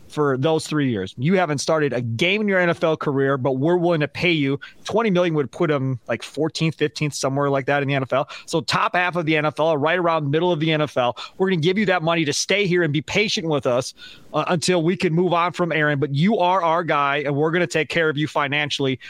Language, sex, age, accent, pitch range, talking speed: English, male, 30-49, American, 140-180 Hz, 260 wpm